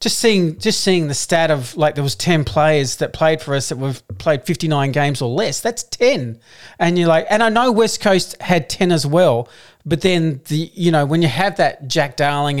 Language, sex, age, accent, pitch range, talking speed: English, male, 40-59, Australian, 135-170 Hz, 235 wpm